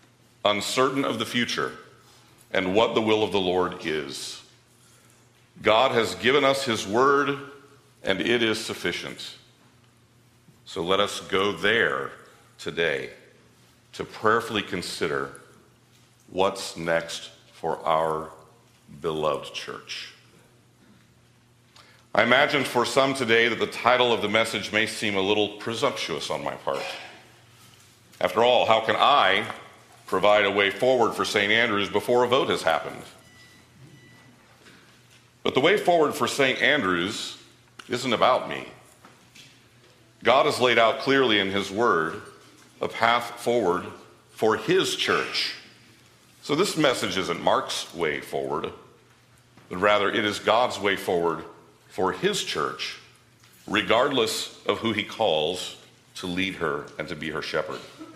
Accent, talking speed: American, 130 wpm